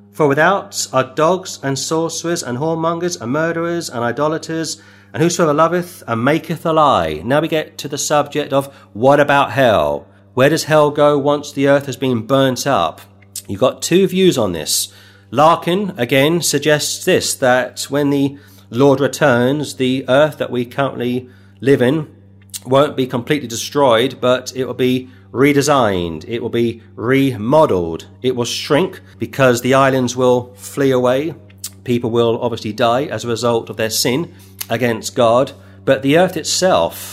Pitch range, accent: 110-140 Hz, British